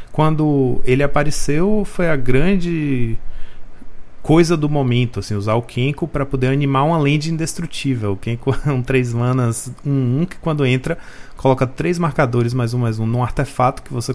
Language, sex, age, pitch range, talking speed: Portuguese, male, 30-49, 120-150 Hz, 170 wpm